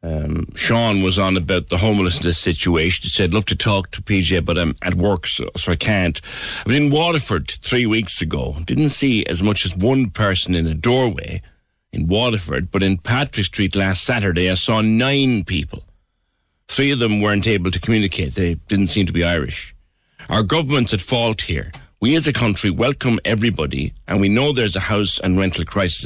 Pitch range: 85-110 Hz